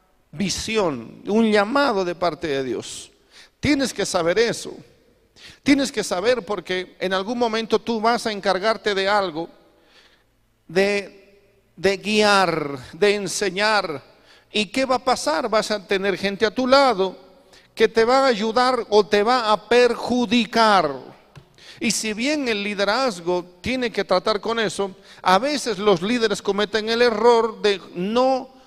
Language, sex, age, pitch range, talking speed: Spanish, male, 50-69, 180-230 Hz, 145 wpm